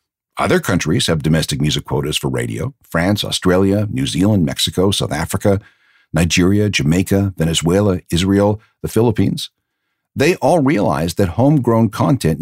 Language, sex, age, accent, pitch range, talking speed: English, male, 60-79, American, 95-125 Hz, 130 wpm